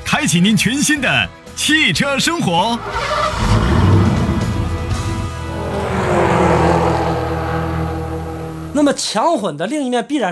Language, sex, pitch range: Chinese, male, 150-235 Hz